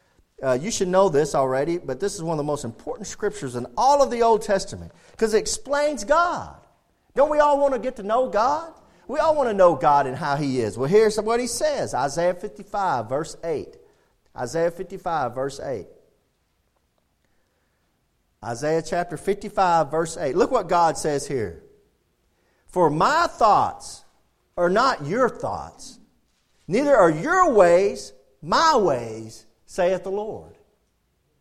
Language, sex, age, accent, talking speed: English, male, 40-59, American, 160 wpm